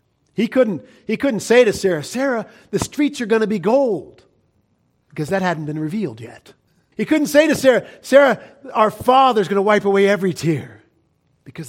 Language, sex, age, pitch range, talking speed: English, male, 50-69, 130-185 Hz, 180 wpm